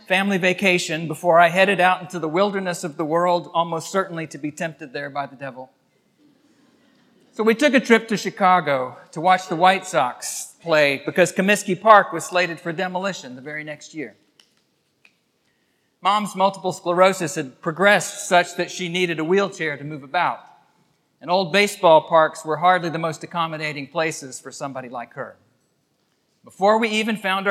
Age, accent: 40-59, American